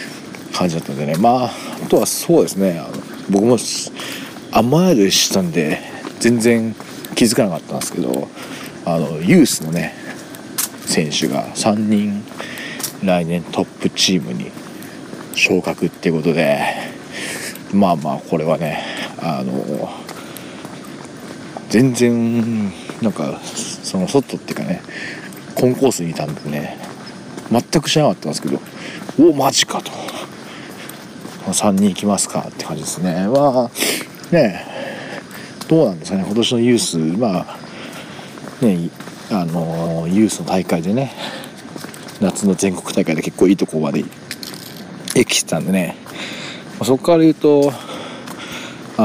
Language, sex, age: Japanese, male, 40-59